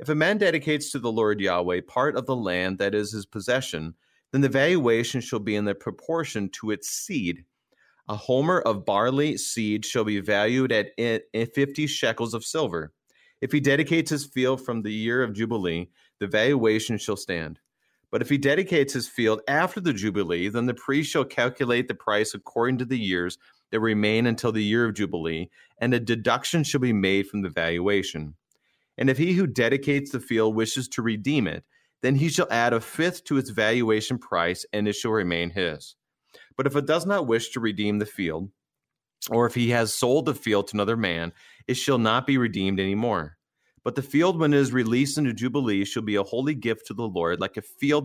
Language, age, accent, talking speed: English, 30-49, American, 200 wpm